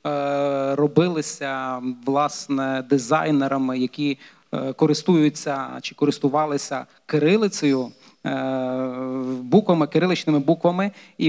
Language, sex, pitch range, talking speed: Polish, male, 140-155 Hz, 65 wpm